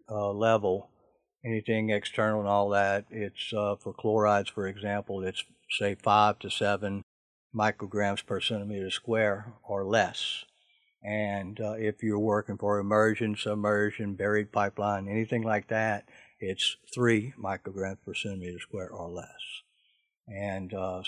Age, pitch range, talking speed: 60-79, 100-110 Hz, 135 wpm